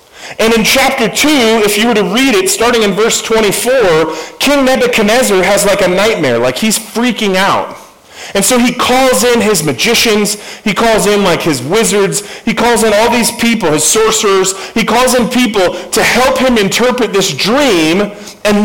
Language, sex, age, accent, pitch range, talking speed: English, male, 40-59, American, 185-235 Hz, 180 wpm